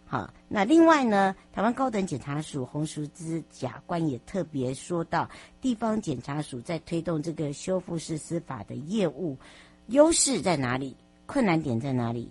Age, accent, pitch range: 60-79, American, 130-175 Hz